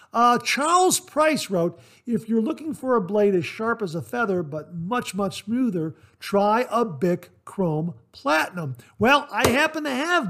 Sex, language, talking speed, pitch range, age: male, English, 170 wpm, 150-225 Hz, 50-69